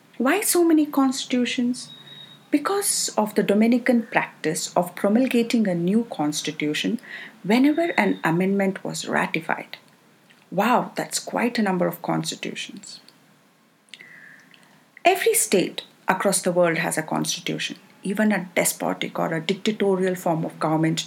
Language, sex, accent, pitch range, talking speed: English, female, Indian, 170-245 Hz, 120 wpm